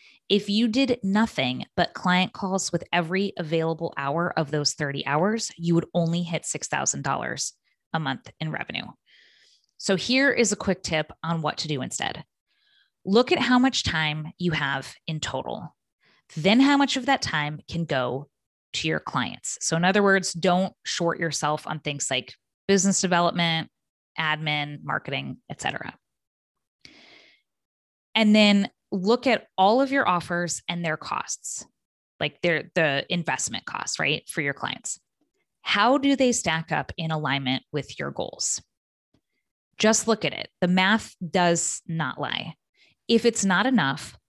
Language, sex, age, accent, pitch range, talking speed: English, female, 20-39, American, 155-205 Hz, 155 wpm